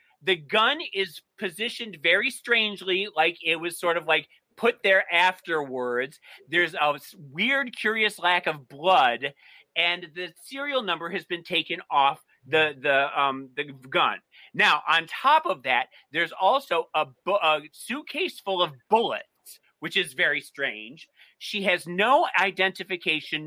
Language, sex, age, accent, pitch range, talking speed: English, male, 40-59, American, 160-200 Hz, 145 wpm